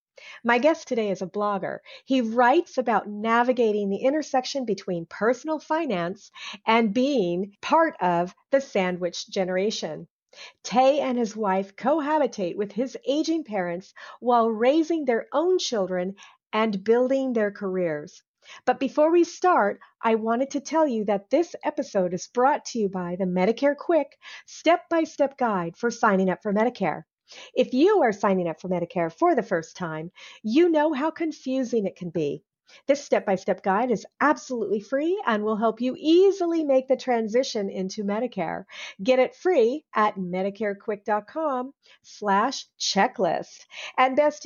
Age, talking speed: 40-59, 150 wpm